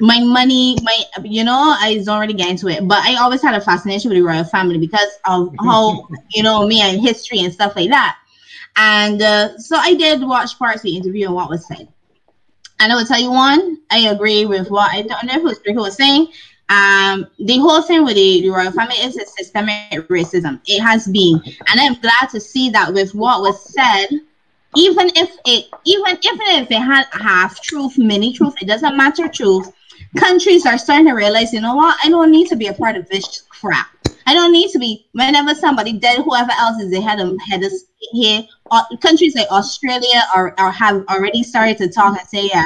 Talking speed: 215 wpm